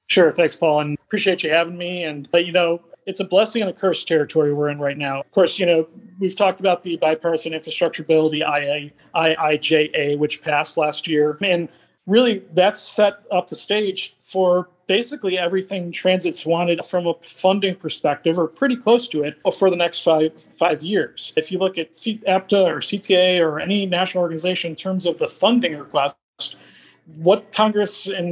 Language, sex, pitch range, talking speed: English, male, 160-190 Hz, 185 wpm